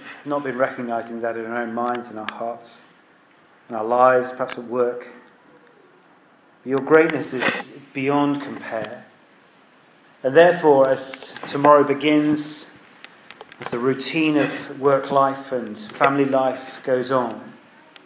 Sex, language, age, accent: male, English, 40-59, British